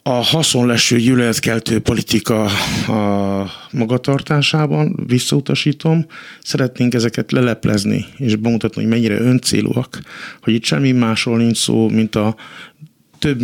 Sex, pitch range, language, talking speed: male, 105-130 Hz, Hungarian, 105 wpm